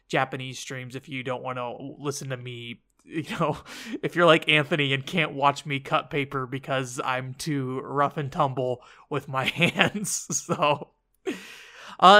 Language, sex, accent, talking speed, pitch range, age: English, male, American, 160 wpm, 135-185 Hz, 20-39